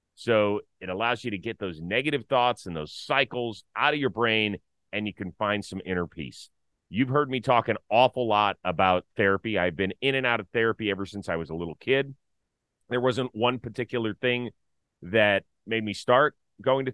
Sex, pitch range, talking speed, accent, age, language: male, 95-120 Hz, 200 wpm, American, 30-49, English